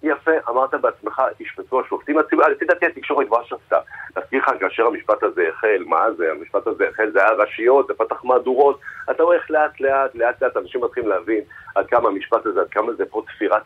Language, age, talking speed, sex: Hebrew, 40-59, 200 wpm, male